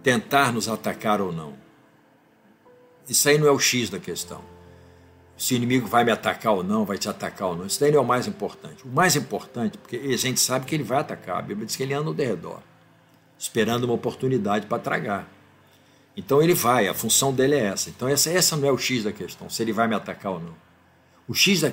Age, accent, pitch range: 60-79, Brazilian, 115-150 Hz